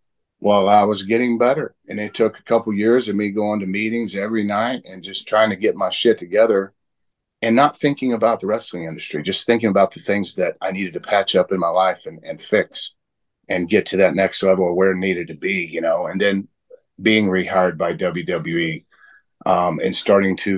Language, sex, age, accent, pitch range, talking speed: English, male, 40-59, American, 95-110 Hz, 215 wpm